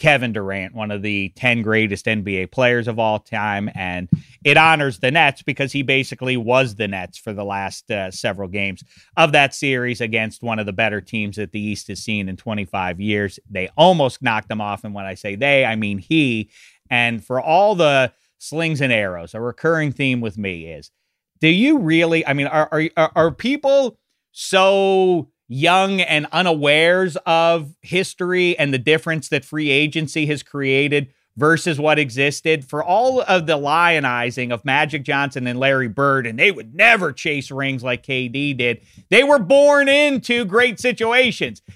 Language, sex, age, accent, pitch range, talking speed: English, male, 30-49, American, 115-165 Hz, 180 wpm